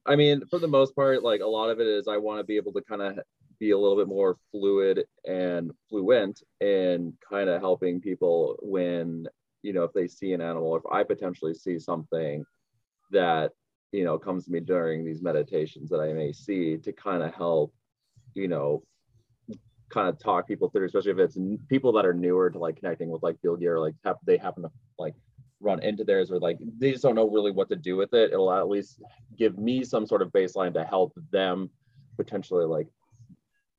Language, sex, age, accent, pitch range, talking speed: English, male, 30-49, American, 90-145 Hz, 215 wpm